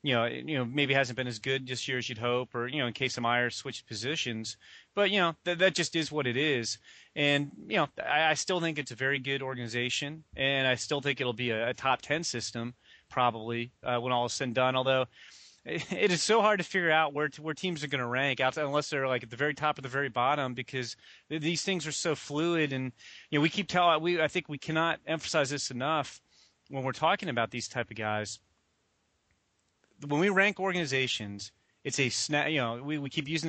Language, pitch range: English, 125-155 Hz